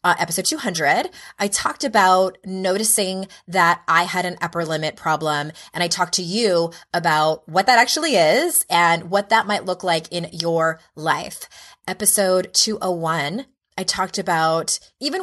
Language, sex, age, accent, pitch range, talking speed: English, female, 20-39, American, 160-210 Hz, 155 wpm